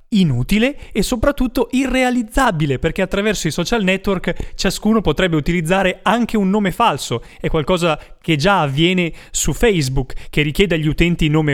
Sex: male